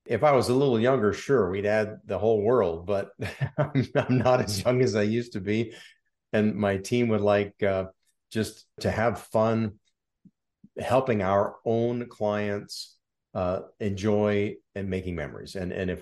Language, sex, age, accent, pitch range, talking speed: English, male, 50-69, American, 90-105 Hz, 170 wpm